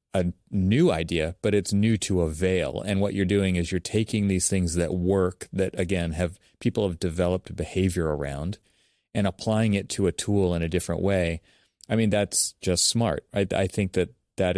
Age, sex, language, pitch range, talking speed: 30-49, male, English, 85-100 Hz, 200 wpm